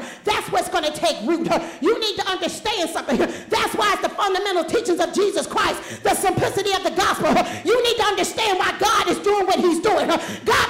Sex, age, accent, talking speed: female, 40-59, American, 210 wpm